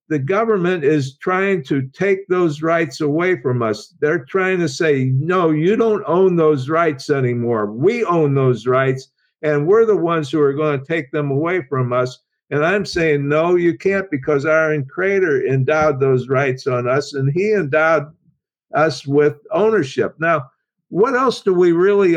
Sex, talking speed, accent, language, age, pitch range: male, 175 wpm, American, English, 50-69, 145-190 Hz